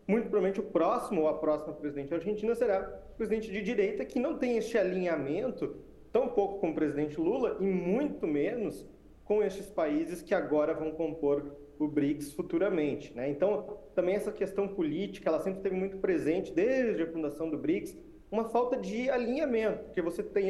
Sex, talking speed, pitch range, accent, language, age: male, 180 wpm, 150-225 Hz, Brazilian, English, 40-59